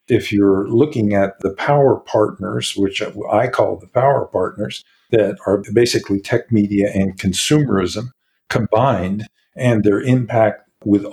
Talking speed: 135 wpm